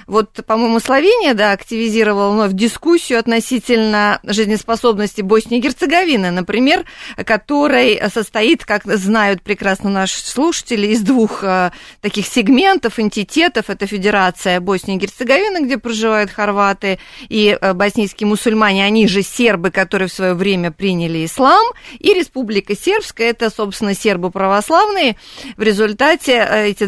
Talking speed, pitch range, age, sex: 125 wpm, 200-255 Hz, 30-49, female